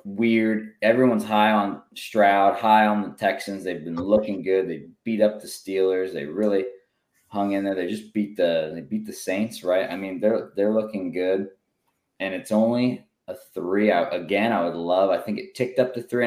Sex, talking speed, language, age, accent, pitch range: male, 205 wpm, English, 20-39, American, 90-115 Hz